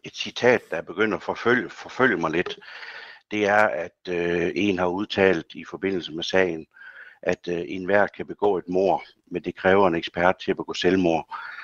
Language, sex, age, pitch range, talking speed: Danish, male, 60-79, 95-130 Hz, 190 wpm